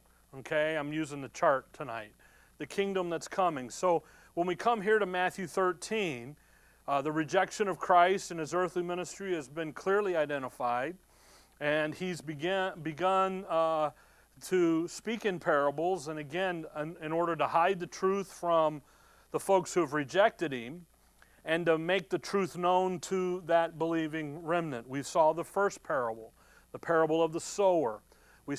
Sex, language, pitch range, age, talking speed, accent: male, English, 150-185 Hz, 40-59, 160 wpm, American